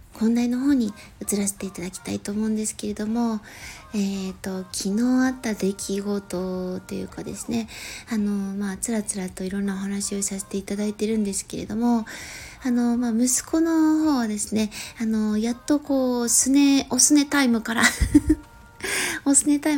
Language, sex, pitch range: Japanese, female, 210-270 Hz